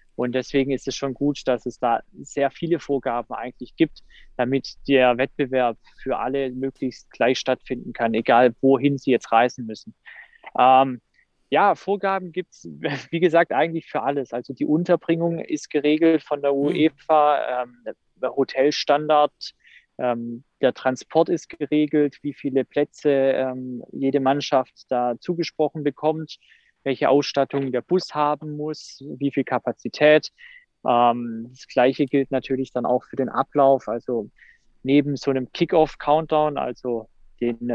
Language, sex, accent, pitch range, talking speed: German, male, German, 125-150 Hz, 145 wpm